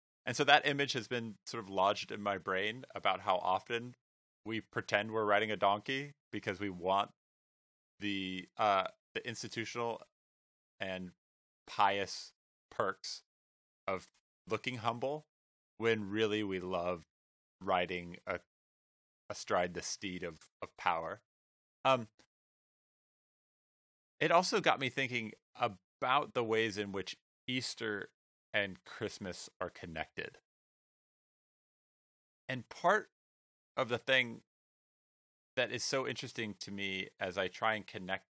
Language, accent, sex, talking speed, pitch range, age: English, American, male, 120 wpm, 90-120 Hz, 30-49